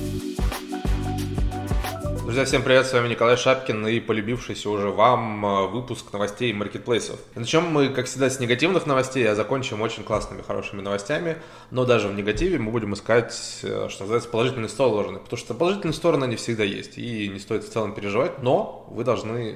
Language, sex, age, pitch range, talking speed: Russian, male, 20-39, 105-125 Hz, 170 wpm